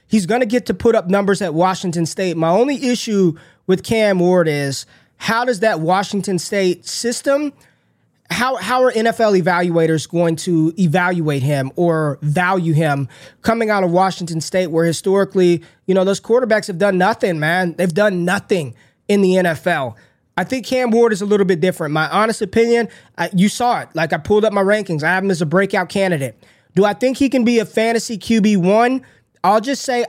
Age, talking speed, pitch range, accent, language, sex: 20-39, 195 wpm, 170-220 Hz, American, English, male